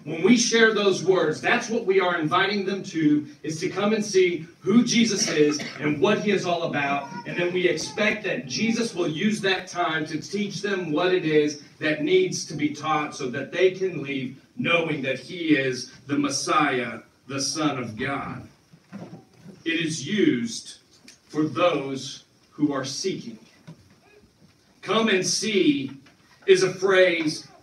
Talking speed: 165 wpm